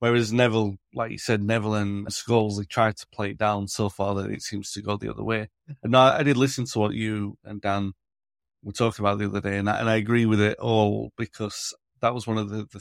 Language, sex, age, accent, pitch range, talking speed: English, male, 30-49, British, 100-115 Hz, 255 wpm